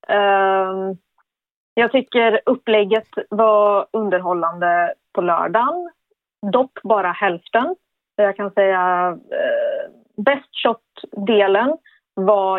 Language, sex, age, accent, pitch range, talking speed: Swedish, female, 30-49, native, 200-300 Hz, 95 wpm